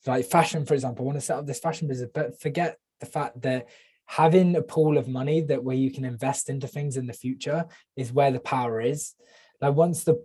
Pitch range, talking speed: 130-160 Hz, 235 wpm